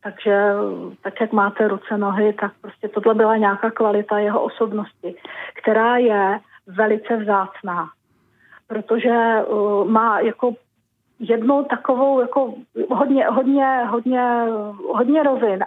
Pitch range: 210-235 Hz